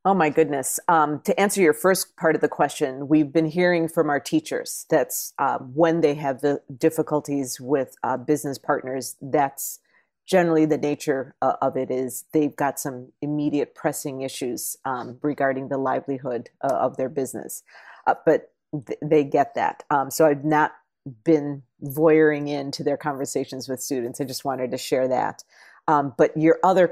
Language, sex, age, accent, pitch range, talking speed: English, female, 40-59, American, 135-155 Hz, 170 wpm